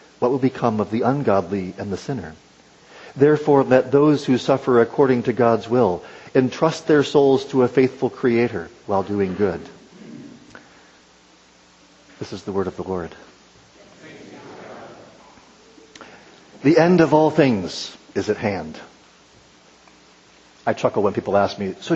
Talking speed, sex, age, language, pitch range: 135 wpm, male, 50-69, English, 100-145 Hz